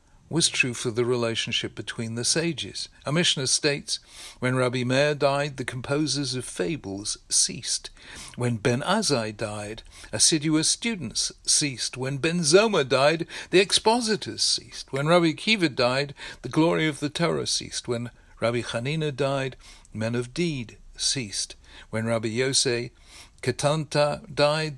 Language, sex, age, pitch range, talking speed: English, male, 60-79, 115-145 Hz, 135 wpm